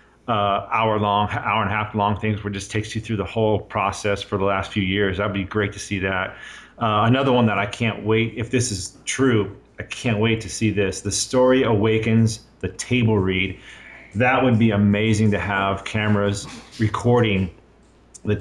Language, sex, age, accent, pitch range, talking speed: English, male, 30-49, American, 100-125 Hz, 200 wpm